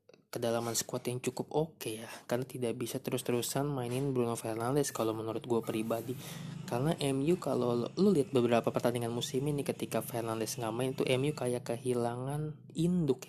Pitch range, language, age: 115-135 Hz, Indonesian, 20-39